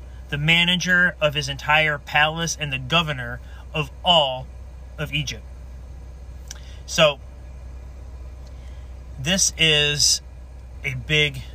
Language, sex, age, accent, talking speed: English, male, 30-49, American, 95 wpm